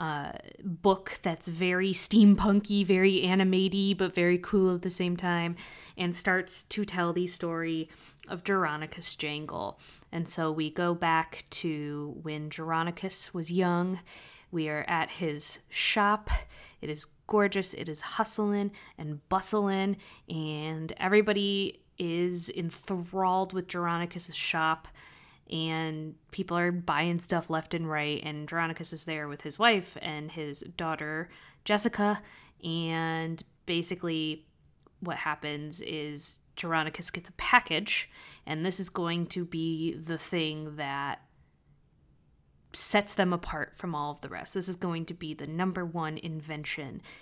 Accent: American